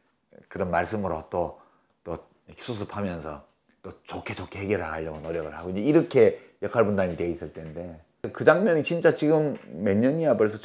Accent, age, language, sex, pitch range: native, 40-59, Korean, male, 85-125 Hz